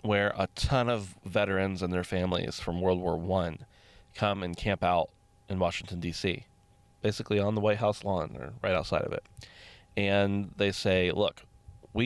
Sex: male